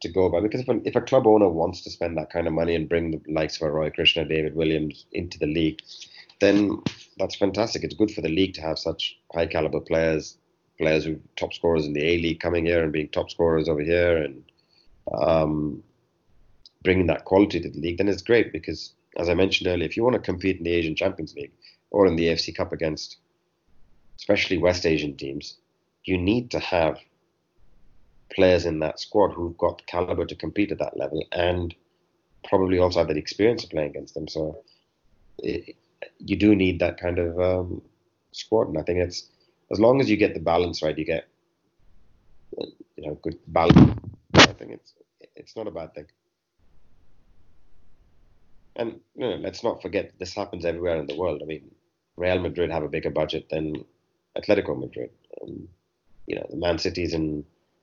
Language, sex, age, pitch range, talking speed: English, male, 30-49, 80-90 Hz, 195 wpm